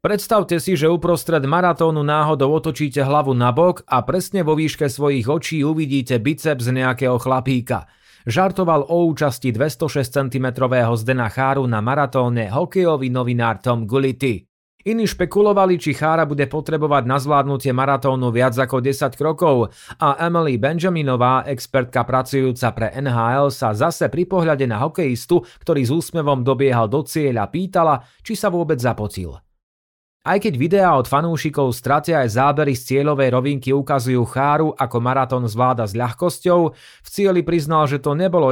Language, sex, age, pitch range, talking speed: Slovak, male, 30-49, 125-155 Hz, 150 wpm